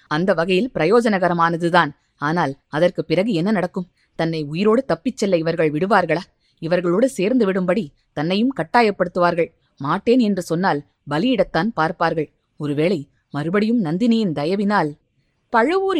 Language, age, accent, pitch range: Tamil, 20-39, native, 180-255 Hz